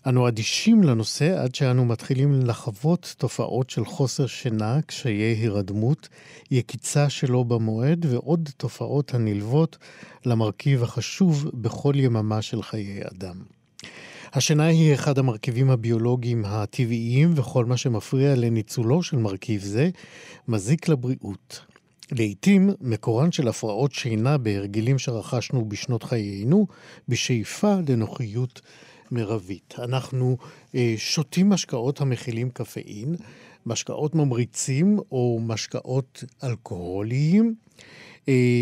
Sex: male